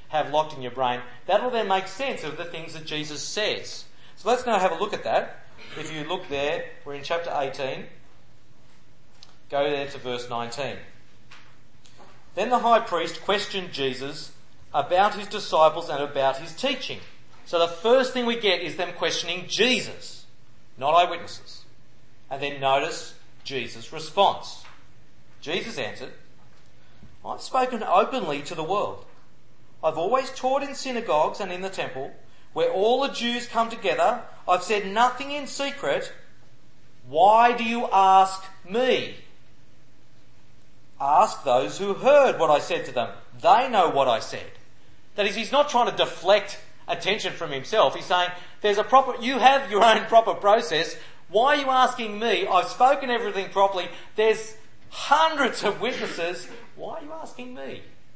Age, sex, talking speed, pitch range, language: 40-59, male, 160 wpm, 145-240 Hz, English